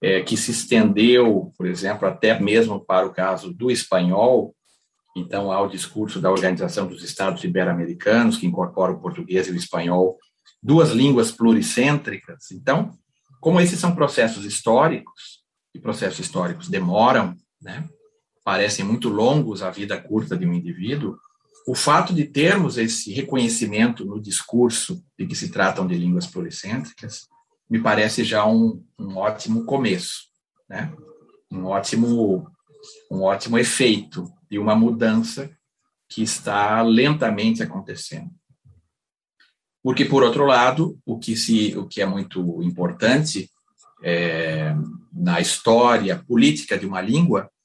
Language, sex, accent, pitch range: Portuguese, male, Brazilian, 100-165 Hz